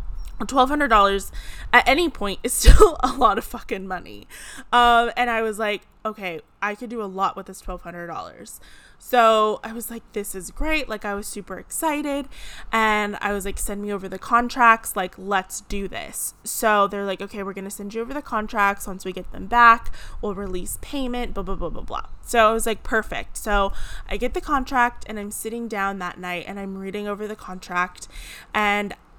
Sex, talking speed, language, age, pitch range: female, 195 wpm, English, 20-39, 195-235 Hz